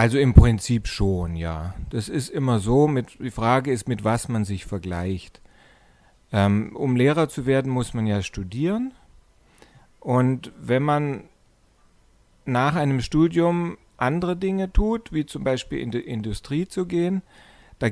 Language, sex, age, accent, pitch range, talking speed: German, male, 40-59, German, 110-145 Hz, 145 wpm